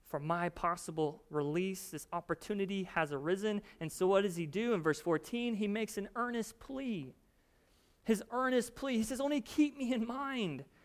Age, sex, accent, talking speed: 30-49, male, American, 170 wpm